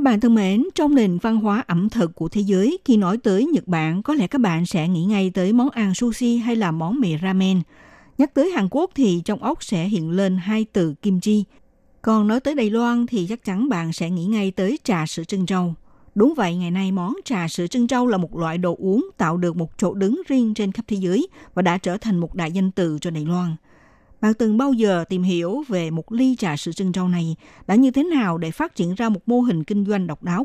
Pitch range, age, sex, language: 180-240 Hz, 60-79, female, Vietnamese